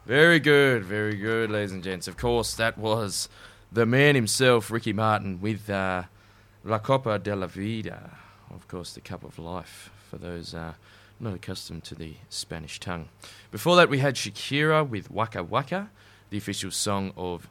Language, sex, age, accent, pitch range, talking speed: English, male, 20-39, Australian, 95-115 Hz, 170 wpm